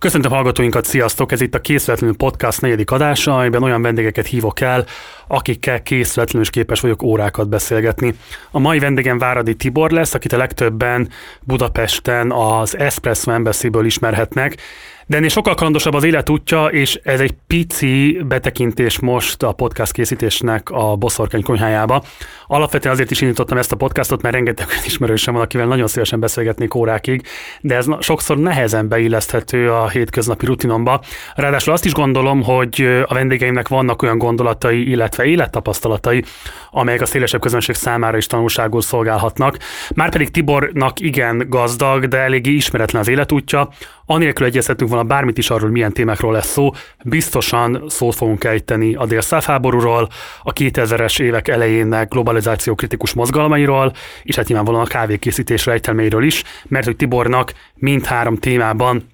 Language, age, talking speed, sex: Hungarian, 30-49, 145 wpm, male